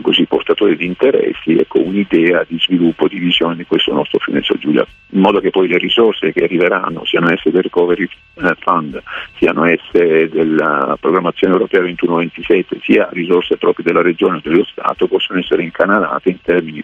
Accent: native